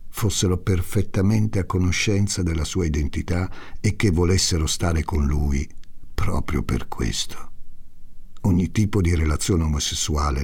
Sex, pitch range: male, 80-100 Hz